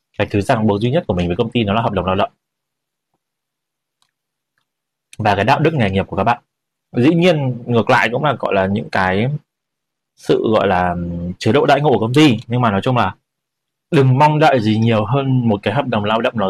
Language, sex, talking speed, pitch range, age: Vietnamese, male, 235 wpm, 100-130 Hz, 20-39